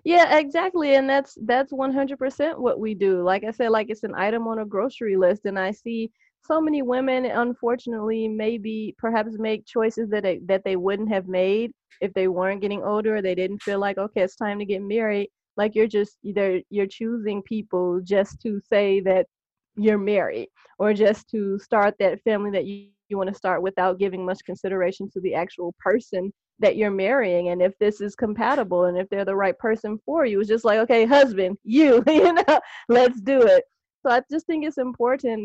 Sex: female